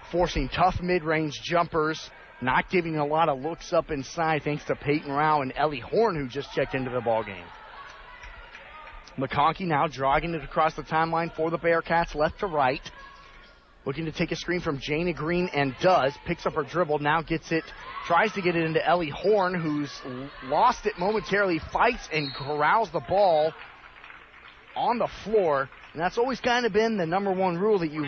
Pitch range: 145-180 Hz